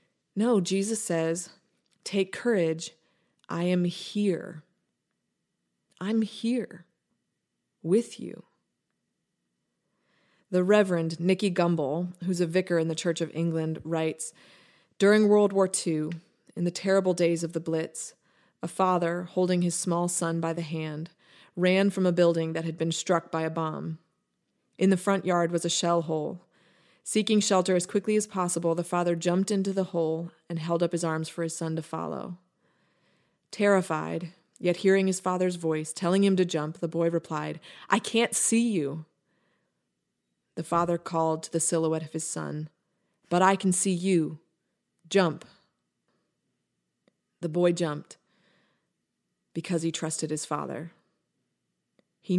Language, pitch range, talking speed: English, 160-190 Hz, 145 wpm